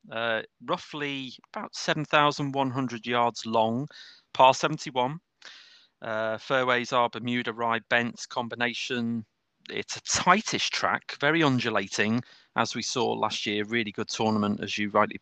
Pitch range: 110-140 Hz